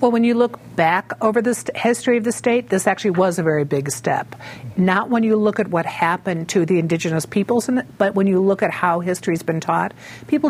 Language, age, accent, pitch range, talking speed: English, 50-69, American, 160-200 Hz, 225 wpm